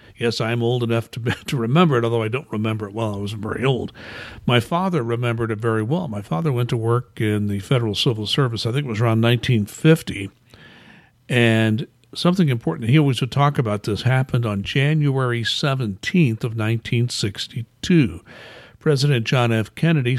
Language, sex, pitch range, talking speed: English, male, 110-135 Hz, 180 wpm